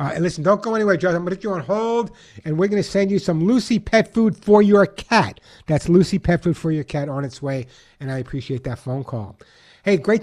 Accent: American